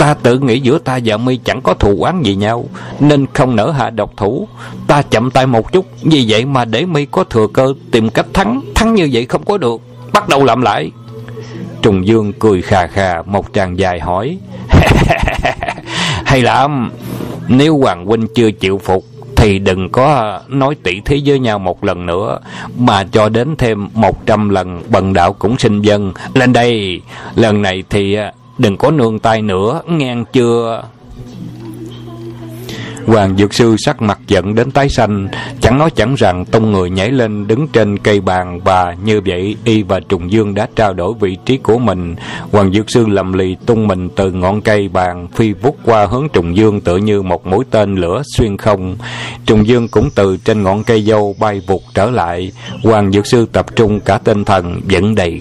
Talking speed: 195 wpm